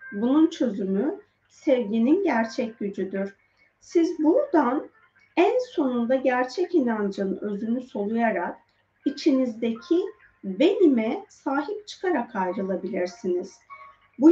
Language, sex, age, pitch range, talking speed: Turkish, female, 40-59, 210-330 Hz, 80 wpm